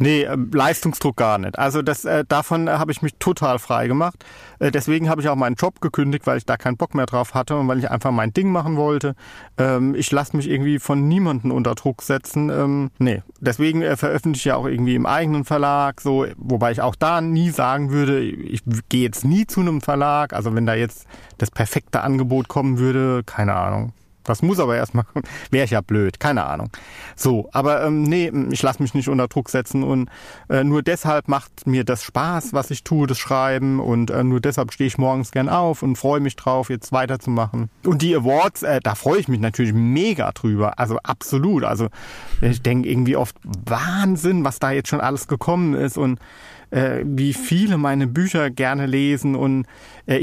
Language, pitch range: German, 125-150 Hz